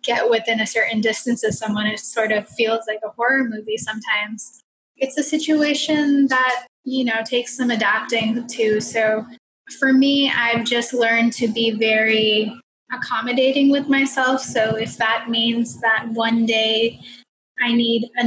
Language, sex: English, female